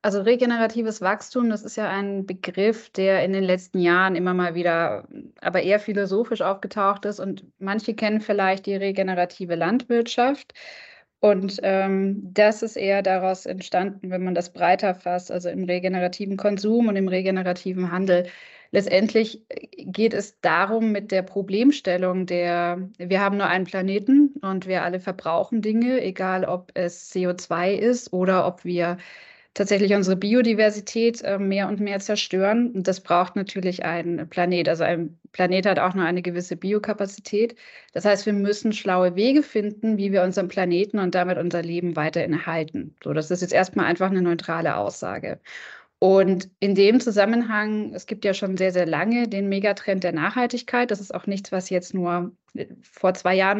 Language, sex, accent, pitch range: German, female, German, 180-210 Hz